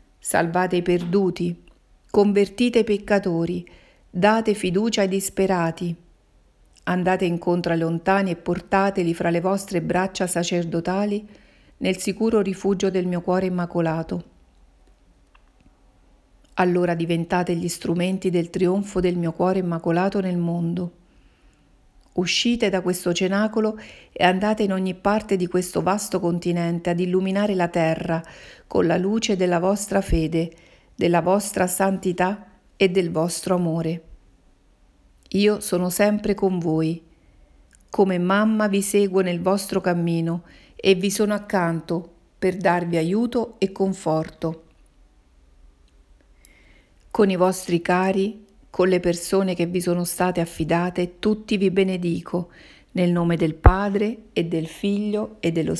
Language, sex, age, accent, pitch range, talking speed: Italian, female, 40-59, native, 170-195 Hz, 125 wpm